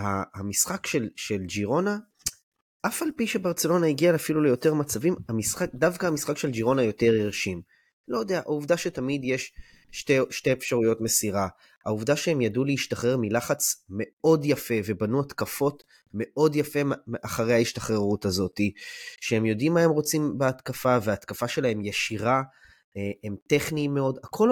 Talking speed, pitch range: 135 wpm, 110-160 Hz